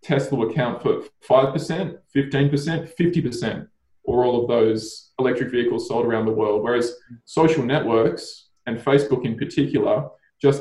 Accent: Australian